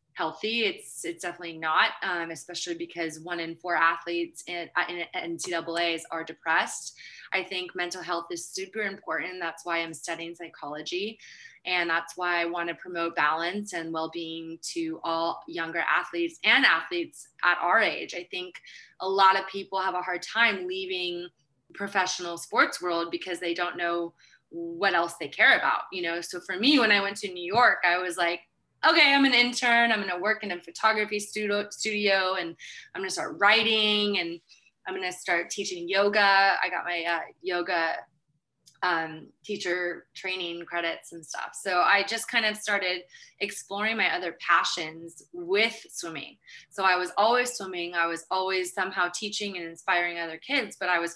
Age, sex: 20-39, female